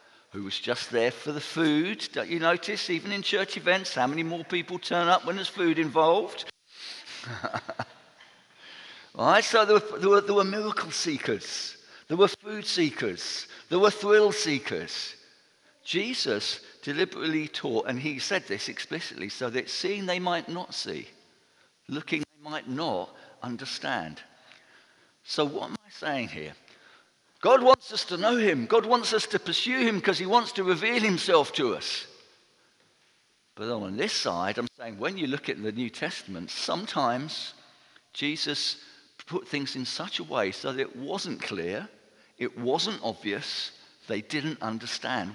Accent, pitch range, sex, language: British, 150-205 Hz, male, English